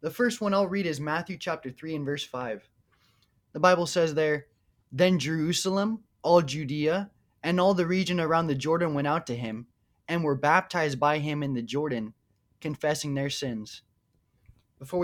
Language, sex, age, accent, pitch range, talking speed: English, male, 20-39, American, 135-180 Hz, 170 wpm